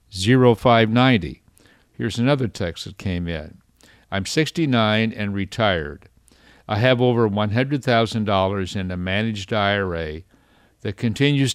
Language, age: English, 50-69